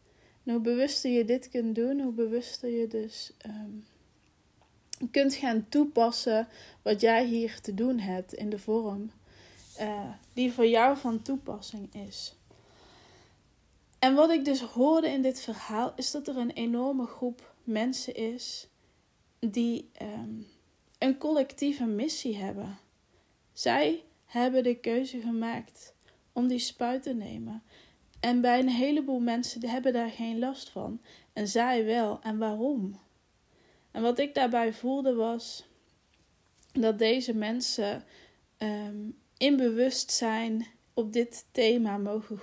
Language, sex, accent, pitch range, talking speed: Dutch, female, Dutch, 220-250 Hz, 125 wpm